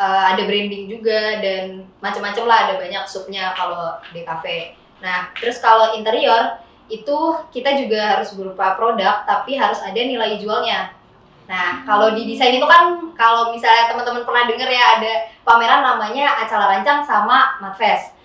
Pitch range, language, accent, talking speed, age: 200-240 Hz, Indonesian, native, 155 wpm, 20-39